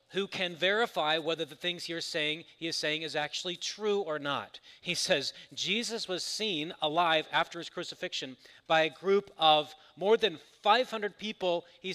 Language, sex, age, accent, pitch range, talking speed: English, male, 40-59, American, 140-185 Hz, 165 wpm